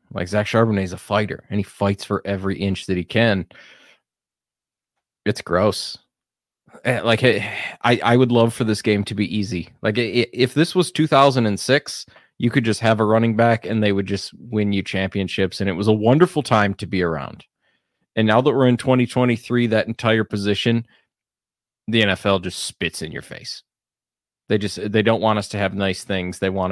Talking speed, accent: 190 wpm, American